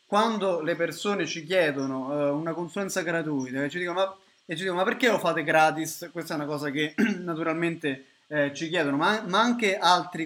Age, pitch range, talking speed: 20-39, 150-190 Hz, 195 wpm